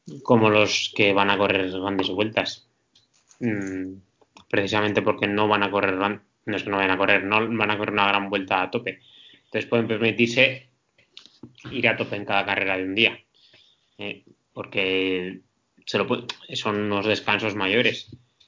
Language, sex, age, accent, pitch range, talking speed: Spanish, male, 20-39, Spanish, 100-110 Hz, 165 wpm